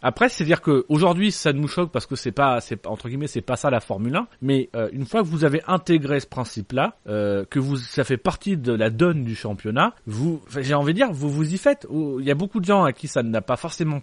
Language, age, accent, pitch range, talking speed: French, 30-49, French, 120-165 Hz, 280 wpm